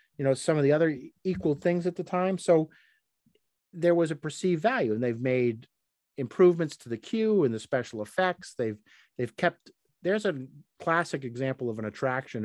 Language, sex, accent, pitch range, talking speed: English, male, American, 115-165 Hz, 185 wpm